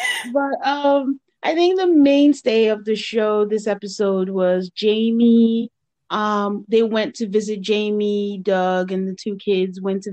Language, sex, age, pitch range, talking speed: English, female, 30-49, 185-220 Hz, 155 wpm